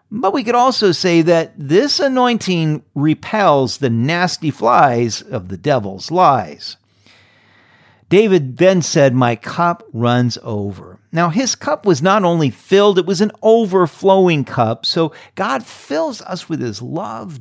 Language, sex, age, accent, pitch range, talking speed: English, male, 50-69, American, 120-180 Hz, 145 wpm